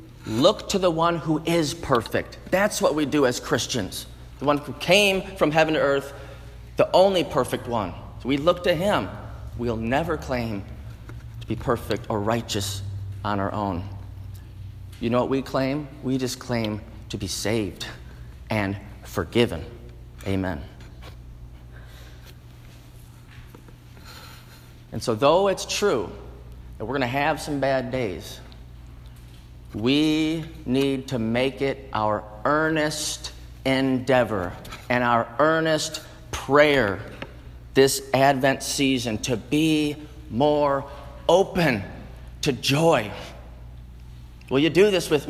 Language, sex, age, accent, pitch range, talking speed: English, male, 30-49, American, 95-145 Hz, 125 wpm